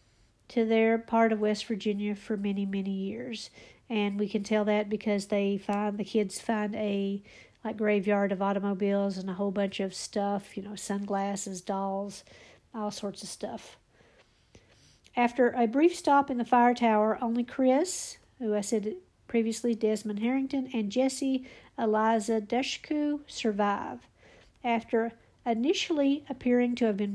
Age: 50-69